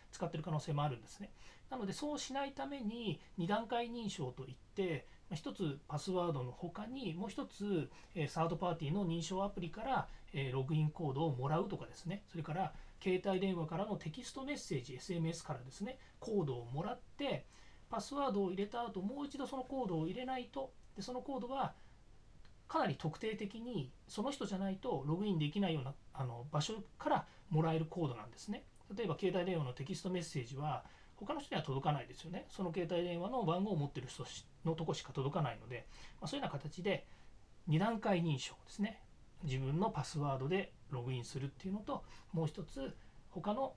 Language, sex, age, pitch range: Japanese, male, 40-59, 145-200 Hz